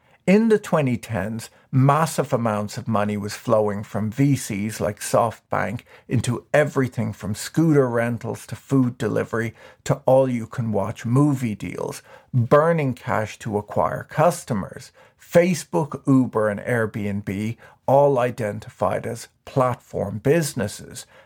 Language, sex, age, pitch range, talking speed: English, male, 50-69, 105-135 Hz, 110 wpm